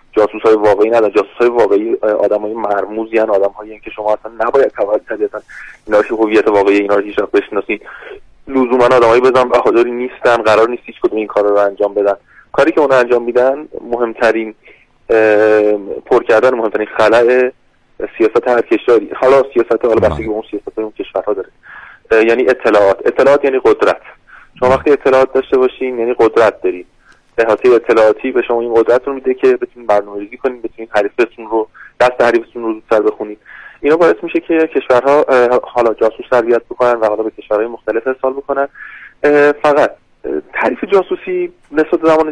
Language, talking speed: Persian, 155 wpm